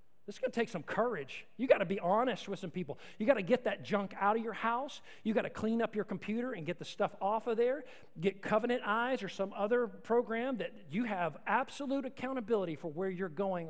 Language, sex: English, male